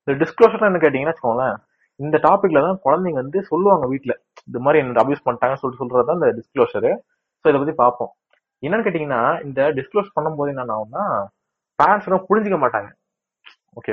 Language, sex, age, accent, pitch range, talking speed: Tamil, male, 20-39, native, 120-180 Hz, 80 wpm